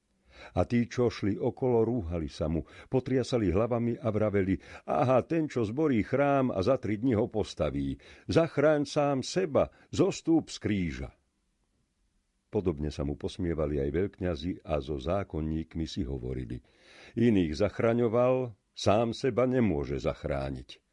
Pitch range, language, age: 75-115 Hz, Slovak, 50-69